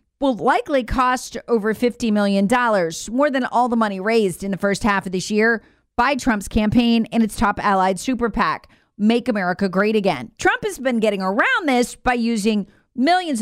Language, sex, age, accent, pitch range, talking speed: English, female, 40-59, American, 200-265 Hz, 185 wpm